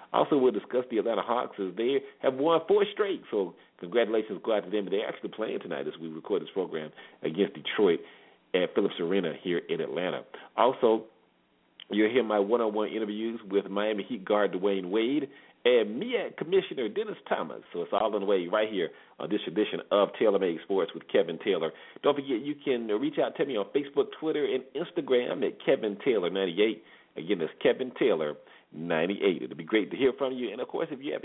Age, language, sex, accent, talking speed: 40-59, English, male, American, 205 wpm